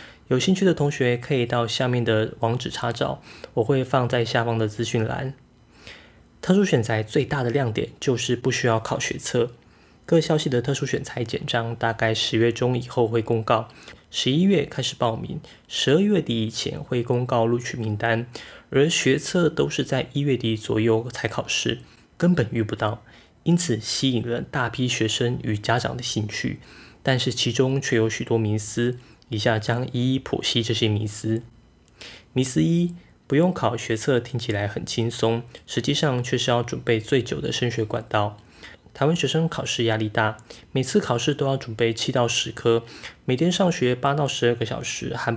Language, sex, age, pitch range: Chinese, male, 20-39, 115-135 Hz